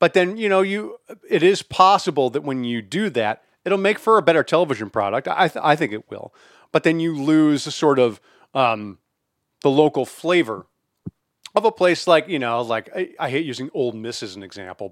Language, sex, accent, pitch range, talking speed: English, male, American, 115-165 Hz, 215 wpm